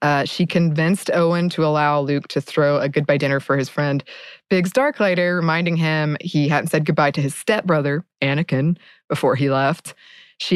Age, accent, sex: 20-39, American, female